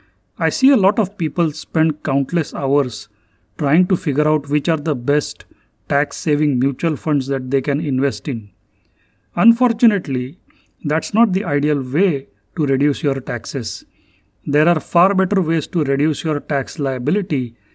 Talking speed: 150 wpm